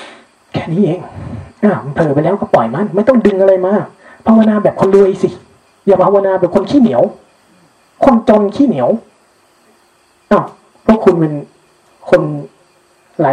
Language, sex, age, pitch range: Thai, male, 20-39, 145-190 Hz